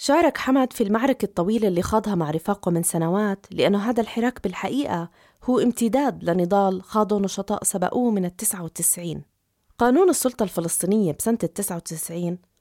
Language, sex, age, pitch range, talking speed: Arabic, female, 20-39, 180-230 Hz, 135 wpm